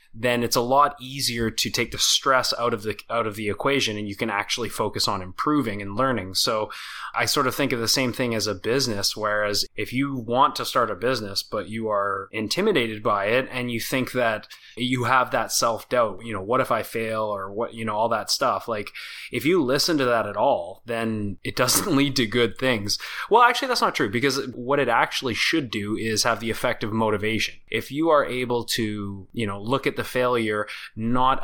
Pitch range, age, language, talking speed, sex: 105-125 Hz, 20-39, English, 220 wpm, male